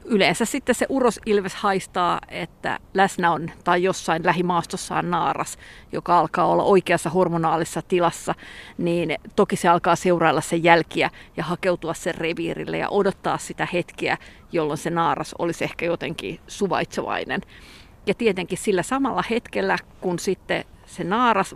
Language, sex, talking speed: Finnish, female, 140 wpm